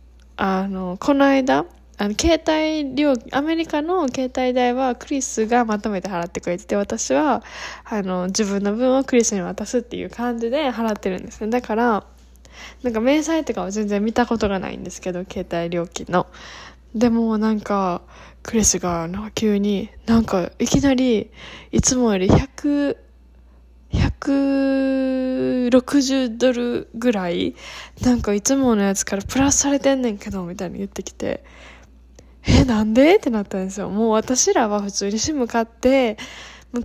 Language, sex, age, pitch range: Japanese, female, 10-29, 190-265 Hz